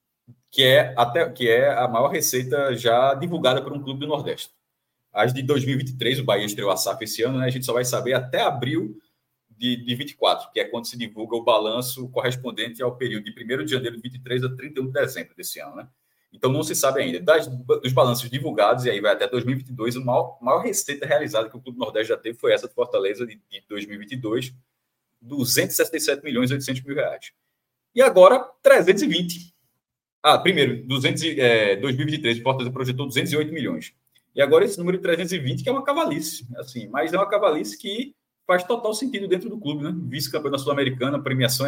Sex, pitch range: male, 125-155 Hz